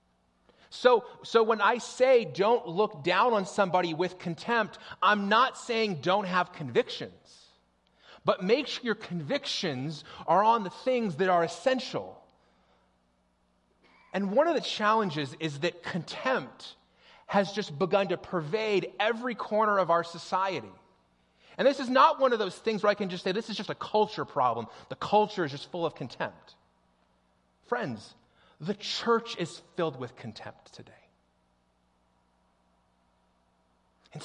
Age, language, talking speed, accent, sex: 30-49, English, 145 wpm, American, male